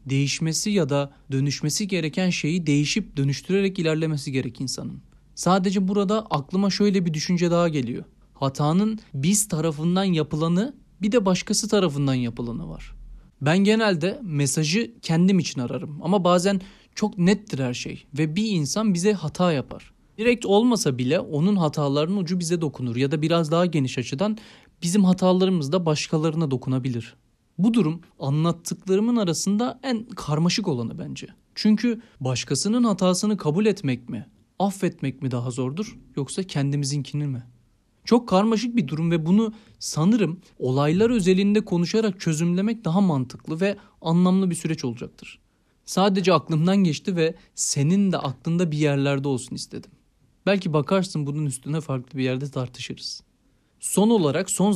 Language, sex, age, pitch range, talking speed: Turkish, male, 30-49, 145-195 Hz, 140 wpm